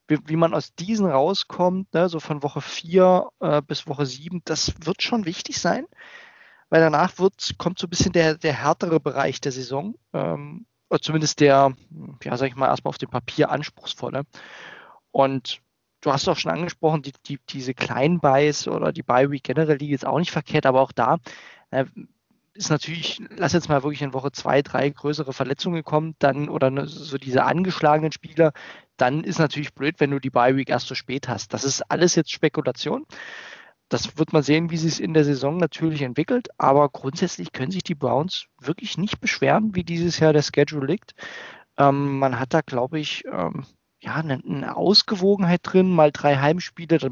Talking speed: 185 wpm